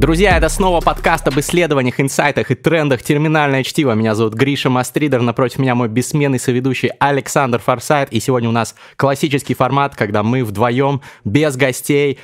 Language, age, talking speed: Russian, 20-39, 160 wpm